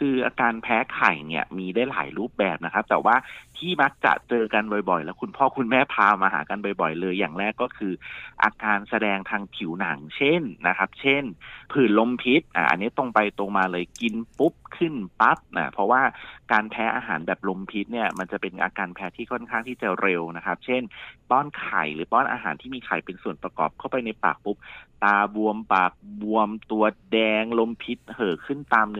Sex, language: male, Thai